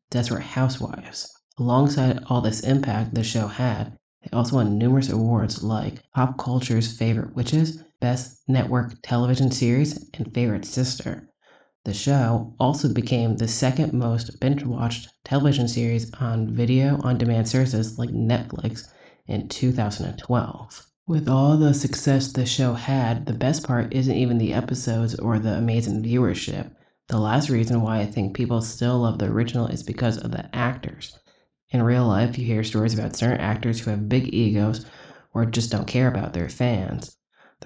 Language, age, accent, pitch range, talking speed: English, 20-39, American, 110-130 Hz, 160 wpm